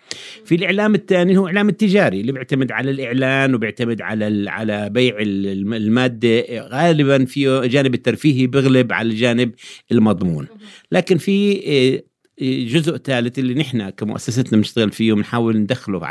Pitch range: 115-140 Hz